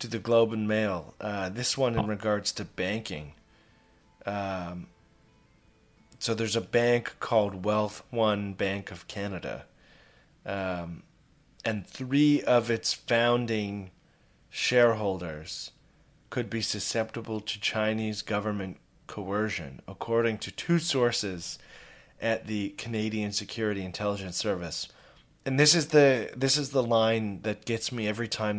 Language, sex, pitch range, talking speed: English, male, 100-125 Hz, 125 wpm